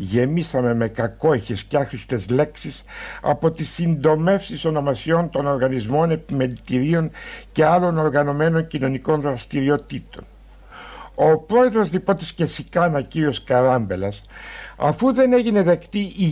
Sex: male